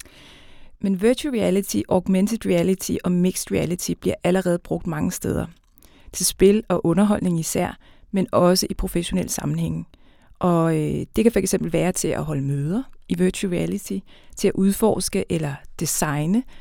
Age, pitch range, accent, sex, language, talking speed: 30-49, 175-205 Hz, native, female, Danish, 145 wpm